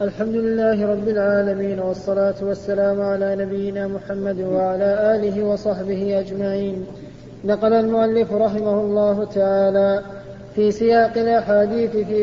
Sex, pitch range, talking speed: male, 200-225 Hz, 110 wpm